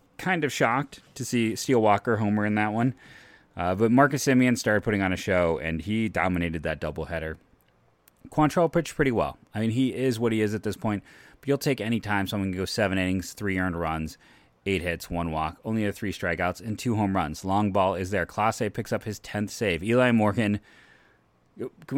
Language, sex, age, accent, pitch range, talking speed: English, male, 30-49, American, 90-120 Hz, 215 wpm